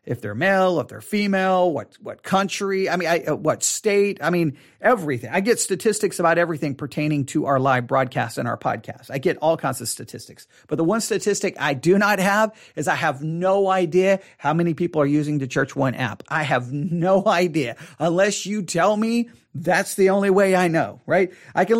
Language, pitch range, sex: English, 145-190 Hz, male